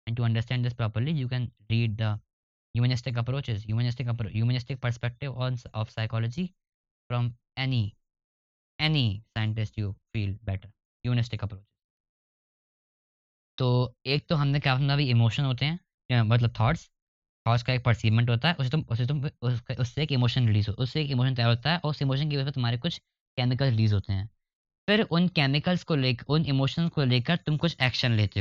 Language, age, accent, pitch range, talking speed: Hindi, 20-39, native, 115-140 Hz, 175 wpm